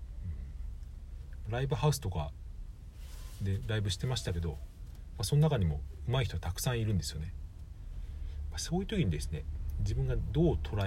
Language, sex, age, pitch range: Japanese, male, 40-59, 80-105 Hz